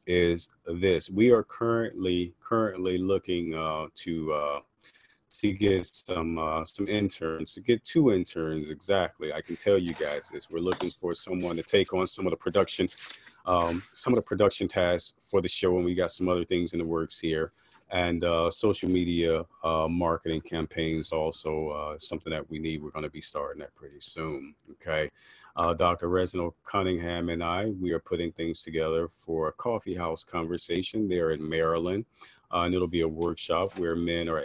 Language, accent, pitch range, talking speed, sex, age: English, American, 80-100 Hz, 185 wpm, male, 40-59